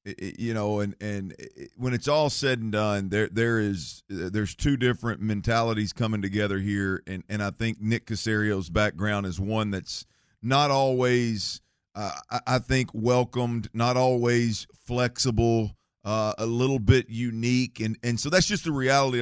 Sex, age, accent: male, 50-69, American